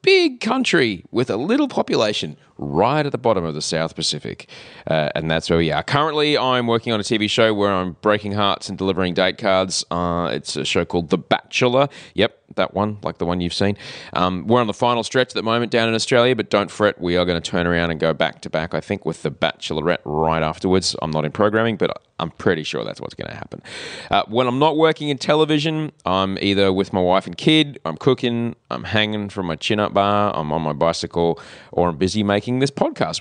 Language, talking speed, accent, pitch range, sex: English, 230 wpm, Australian, 80-110 Hz, male